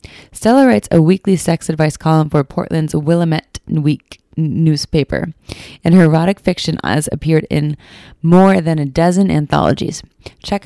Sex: female